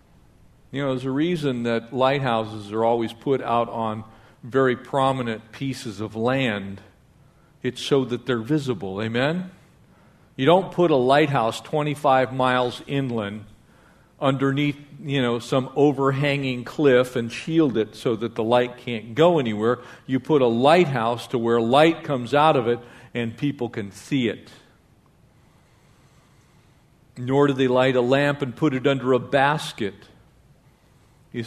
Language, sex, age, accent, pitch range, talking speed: English, male, 50-69, American, 120-145 Hz, 145 wpm